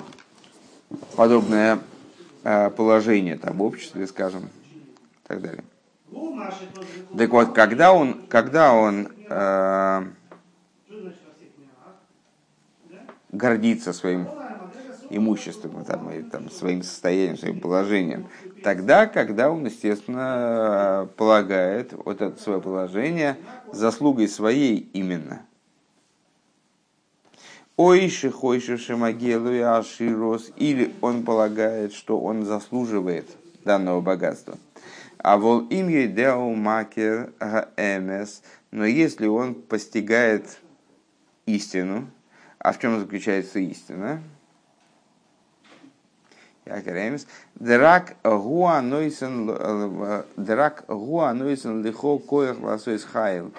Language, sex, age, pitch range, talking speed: Russian, male, 50-69, 100-135 Hz, 65 wpm